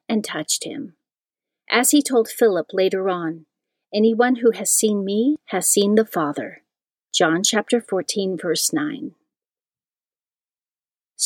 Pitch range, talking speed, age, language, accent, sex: 185-255 Hz, 125 wpm, 40-59, English, American, female